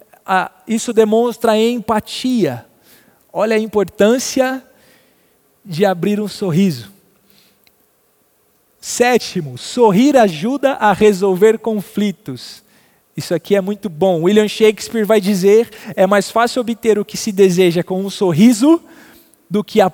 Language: Portuguese